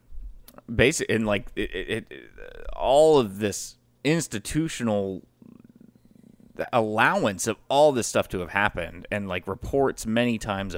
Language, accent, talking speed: English, American, 130 wpm